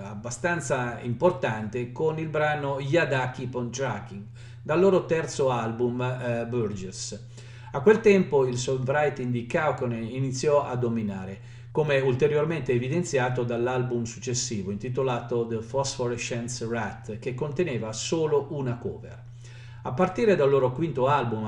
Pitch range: 120-145 Hz